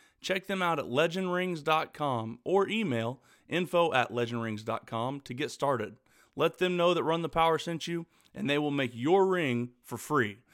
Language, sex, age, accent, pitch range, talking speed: English, male, 30-49, American, 120-165 Hz, 170 wpm